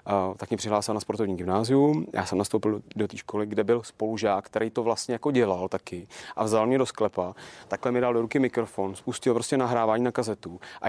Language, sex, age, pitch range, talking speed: Czech, male, 30-49, 105-130 Hz, 210 wpm